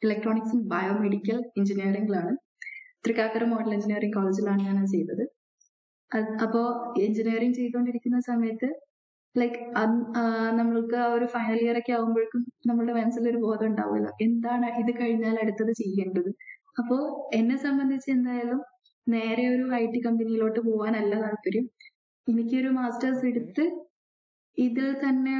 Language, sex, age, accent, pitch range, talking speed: Malayalam, female, 20-39, native, 220-250 Hz, 110 wpm